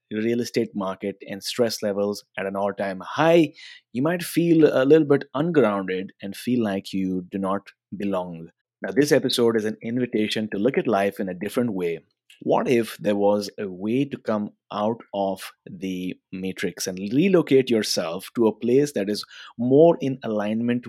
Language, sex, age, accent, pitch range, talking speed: English, male, 30-49, Indian, 100-130 Hz, 180 wpm